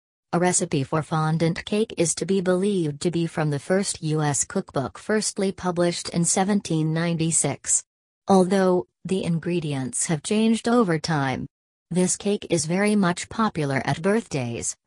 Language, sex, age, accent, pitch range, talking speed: English, female, 40-59, American, 150-180 Hz, 140 wpm